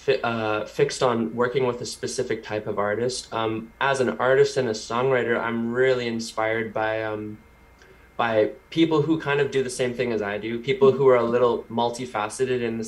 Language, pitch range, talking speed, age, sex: English, 110-125 Hz, 190 wpm, 20-39, male